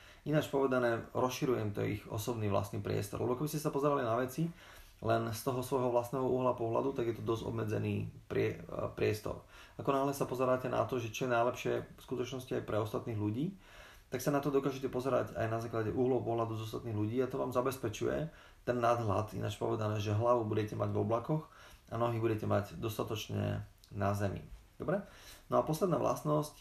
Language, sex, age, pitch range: Slovak, male, 30-49, 105-125 Hz